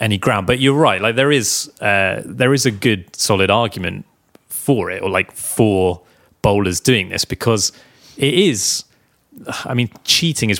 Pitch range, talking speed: 95-115 Hz, 170 wpm